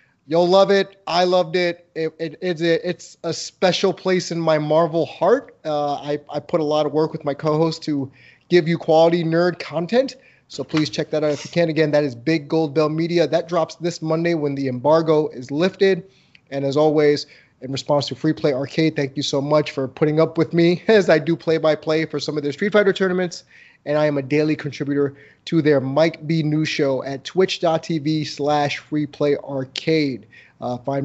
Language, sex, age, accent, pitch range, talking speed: English, male, 30-49, American, 145-175 Hz, 205 wpm